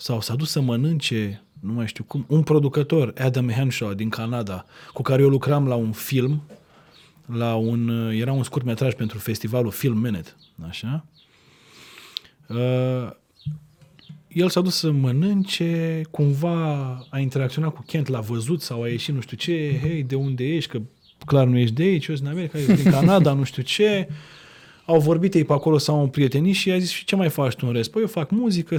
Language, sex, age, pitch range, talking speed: Romanian, male, 20-39, 115-160 Hz, 190 wpm